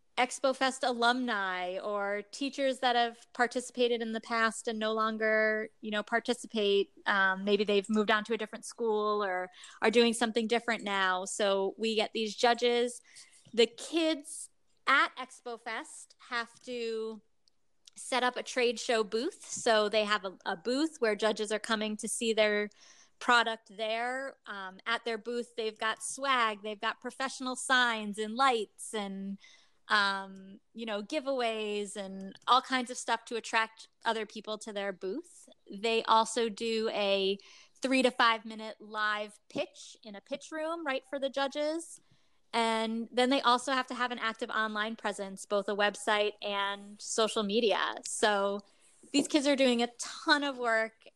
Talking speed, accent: 160 wpm, American